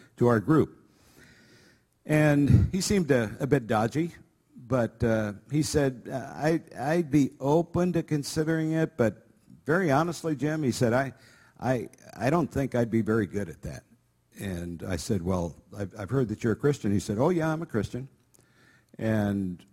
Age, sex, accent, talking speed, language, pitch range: 50-69, male, American, 175 wpm, English, 100-135 Hz